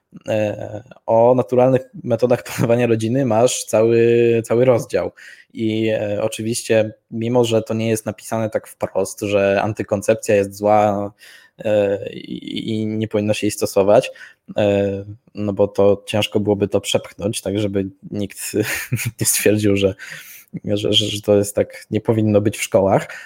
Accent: native